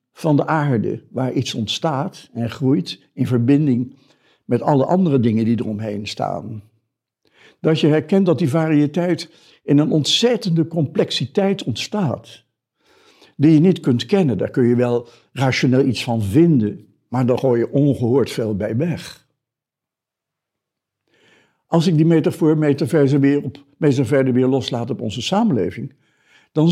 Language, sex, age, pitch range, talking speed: Dutch, male, 60-79, 125-170 Hz, 135 wpm